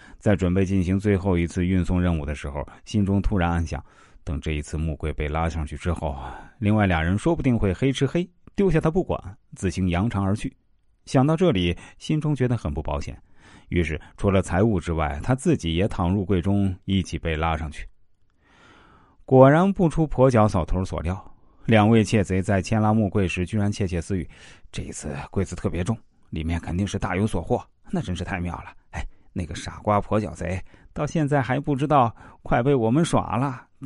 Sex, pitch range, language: male, 90-125 Hz, Chinese